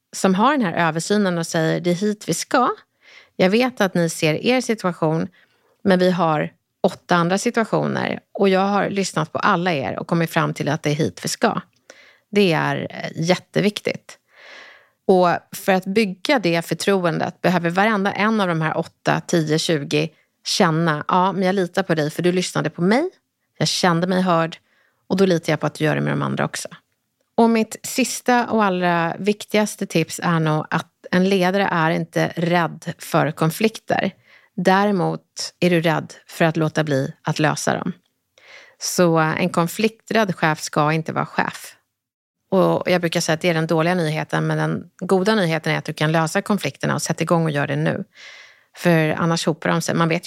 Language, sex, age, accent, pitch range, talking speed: Swedish, female, 30-49, native, 160-200 Hz, 190 wpm